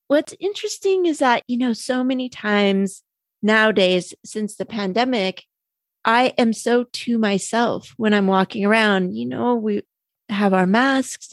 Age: 30-49